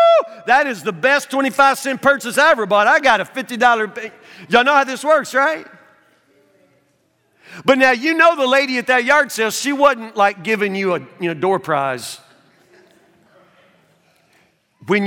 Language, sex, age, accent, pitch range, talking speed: English, male, 50-69, American, 185-270 Hz, 150 wpm